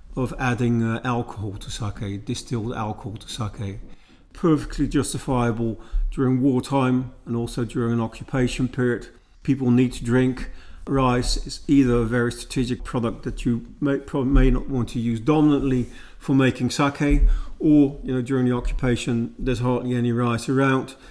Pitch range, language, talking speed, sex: 115-135 Hz, English, 155 wpm, male